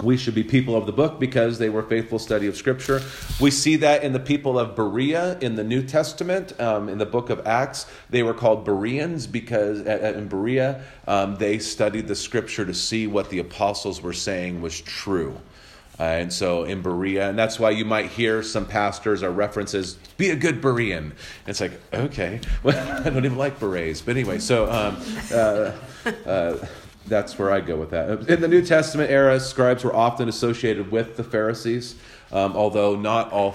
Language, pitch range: English, 100-125 Hz